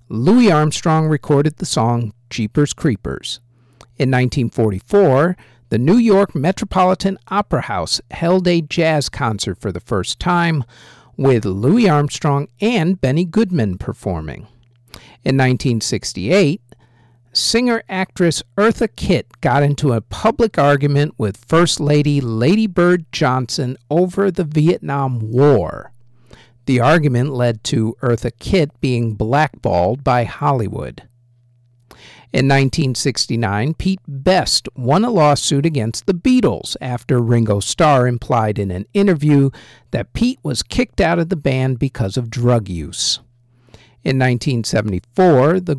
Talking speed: 120 wpm